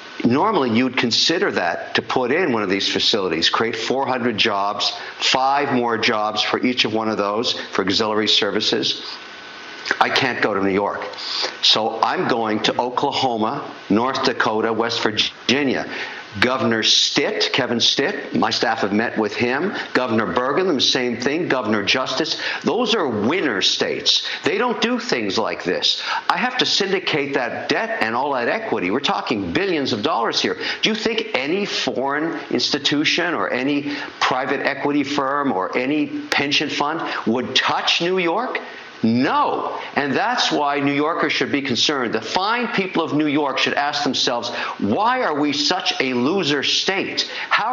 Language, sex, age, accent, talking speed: English, male, 50-69, American, 160 wpm